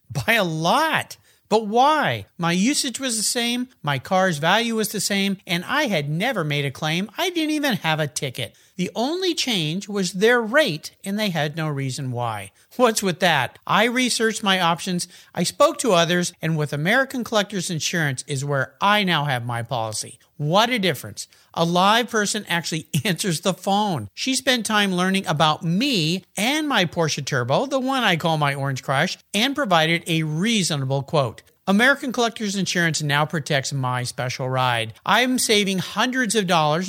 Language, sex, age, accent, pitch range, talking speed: English, male, 50-69, American, 150-225 Hz, 175 wpm